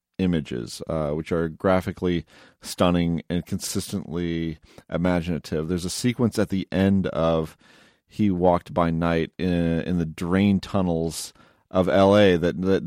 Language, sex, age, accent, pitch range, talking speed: English, male, 40-59, American, 80-95 Hz, 135 wpm